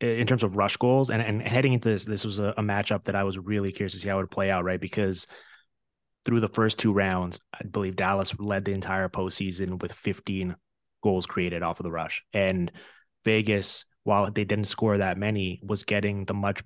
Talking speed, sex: 220 wpm, male